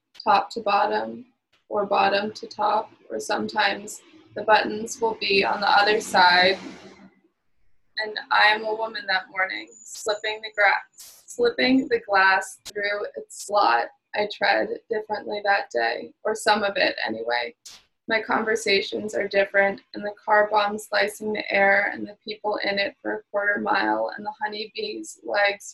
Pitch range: 200-215 Hz